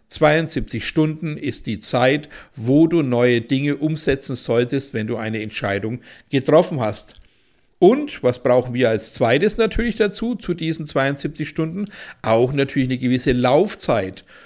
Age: 60-79